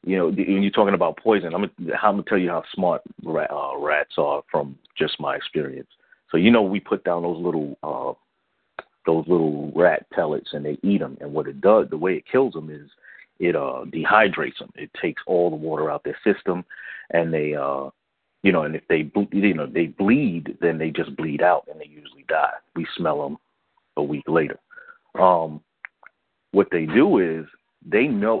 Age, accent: 40-59, American